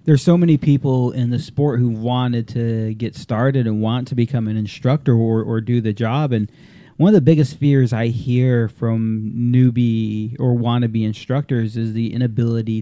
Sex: male